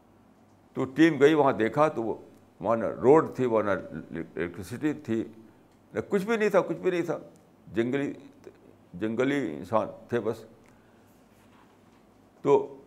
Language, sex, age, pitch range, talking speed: Urdu, male, 60-79, 130-205 Hz, 125 wpm